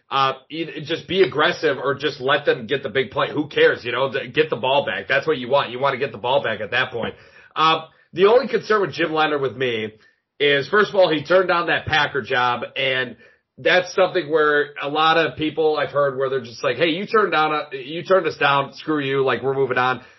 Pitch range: 135-175 Hz